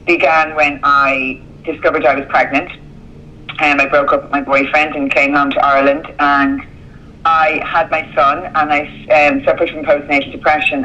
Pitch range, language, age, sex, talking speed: 140-180 Hz, English, 30-49, female, 170 wpm